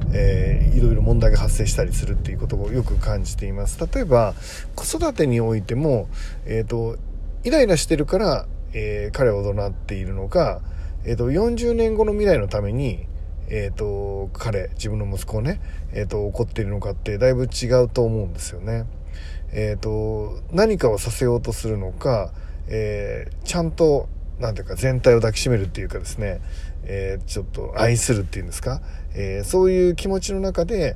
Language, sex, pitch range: Japanese, male, 90-130 Hz